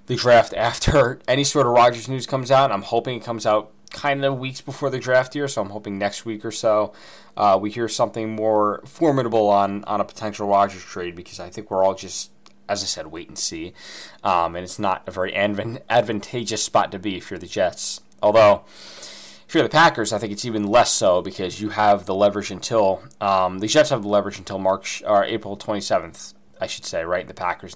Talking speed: 220 wpm